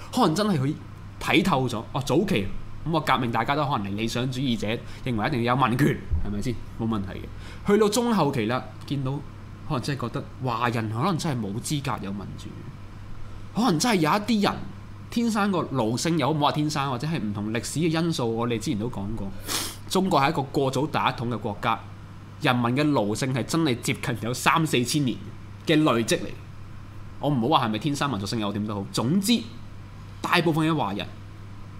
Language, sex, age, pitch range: Chinese, male, 20-39, 105-145 Hz